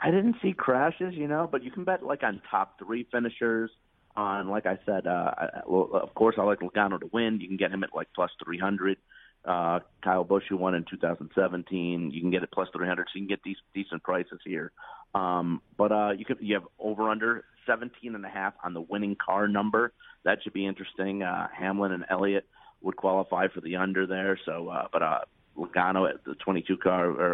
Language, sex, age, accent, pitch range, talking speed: English, male, 40-59, American, 95-110 Hz, 215 wpm